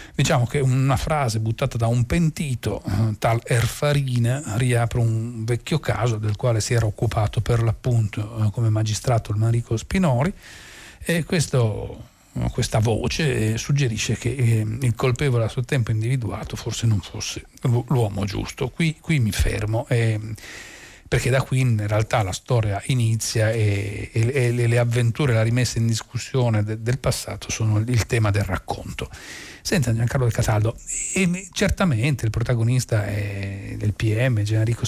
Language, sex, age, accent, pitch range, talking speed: Italian, male, 40-59, native, 110-135 Hz, 140 wpm